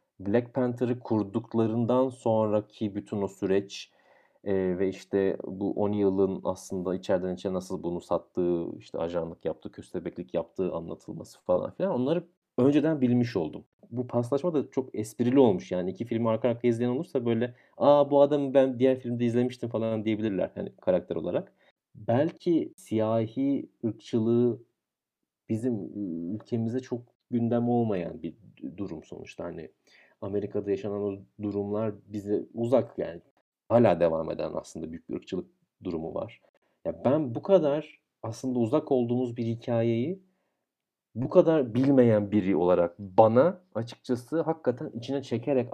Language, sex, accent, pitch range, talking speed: Turkish, male, native, 105-140 Hz, 135 wpm